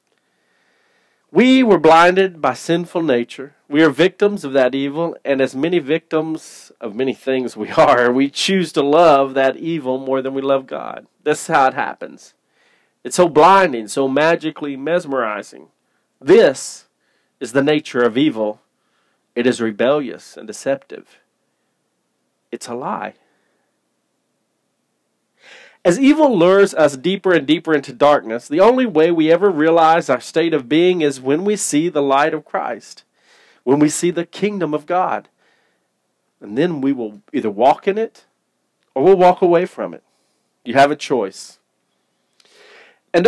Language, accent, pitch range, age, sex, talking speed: English, American, 135-180 Hz, 40-59, male, 155 wpm